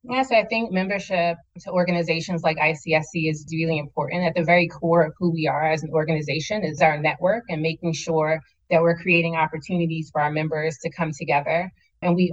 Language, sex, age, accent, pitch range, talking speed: English, female, 20-39, American, 155-170 Hz, 195 wpm